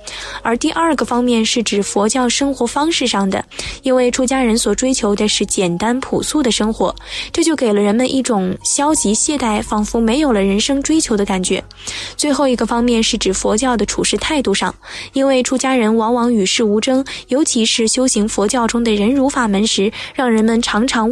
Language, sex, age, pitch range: Chinese, female, 10-29, 215-260 Hz